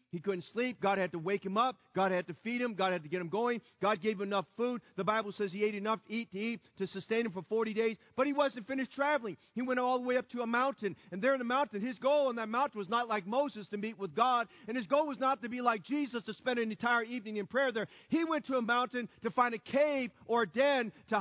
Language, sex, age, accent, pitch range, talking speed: English, male, 40-59, American, 215-270 Hz, 290 wpm